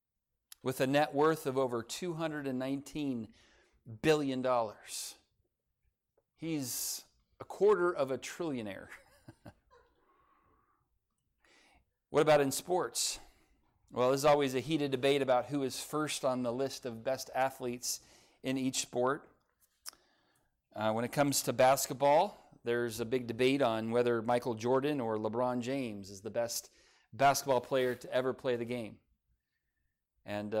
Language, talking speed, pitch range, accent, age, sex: English, 135 wpm, 120-145 Hz, American, 40-59, male